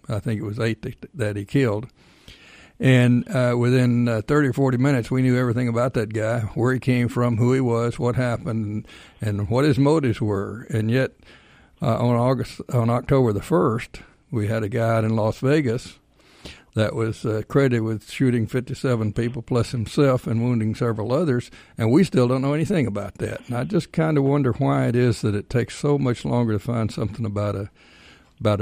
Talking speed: 200 wpm